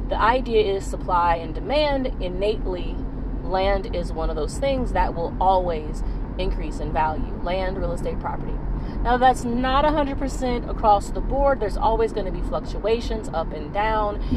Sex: female